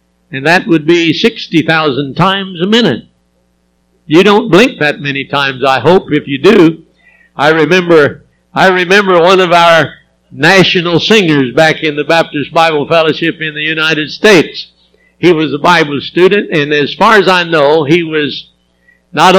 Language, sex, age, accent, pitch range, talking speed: English, male, 60-79, American, 140-180 Hz, 160 wpm